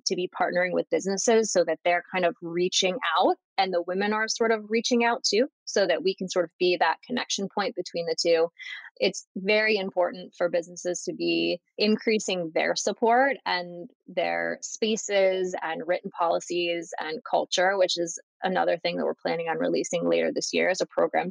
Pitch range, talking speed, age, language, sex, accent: 175-215 Hz, 190 wpm, 20-39, English, female, American